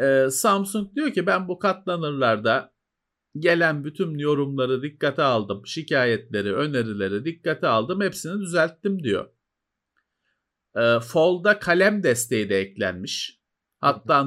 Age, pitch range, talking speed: 50-69, 125-195 Hz, 100 wpm